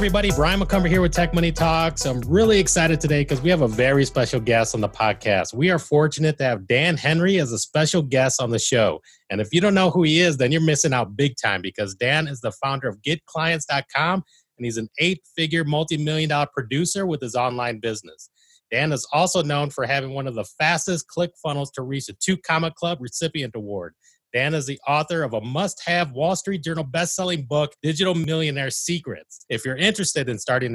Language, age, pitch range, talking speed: English, 30-49, 130-170 Hz, 210 wpm